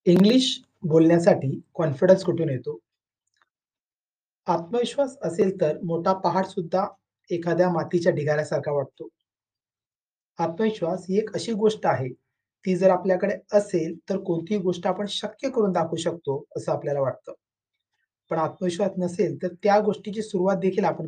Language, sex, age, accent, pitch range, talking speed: Marathi, male, 30-49, native, 155-205 Hz, 65 wpm